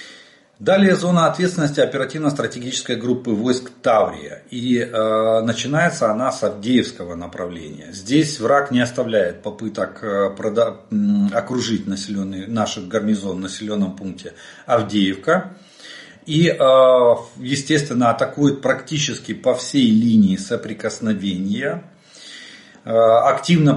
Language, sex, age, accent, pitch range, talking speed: Russian, male, 40-59, native, 110-150 Hz, 100 wpm